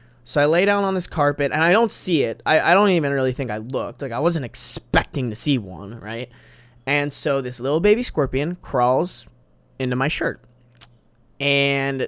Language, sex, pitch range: English, male, 120-155 Hz